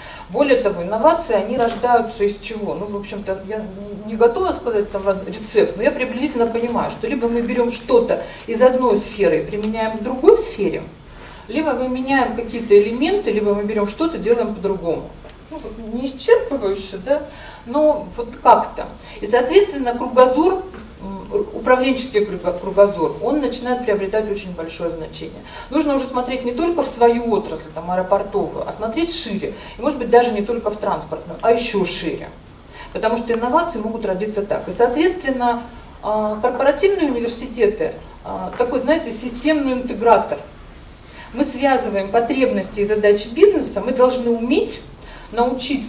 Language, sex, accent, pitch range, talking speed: Russian, female, native, 210-270 Hz, 145 wpm